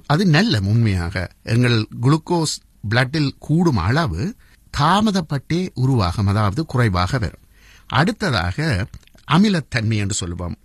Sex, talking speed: male, 90 wpm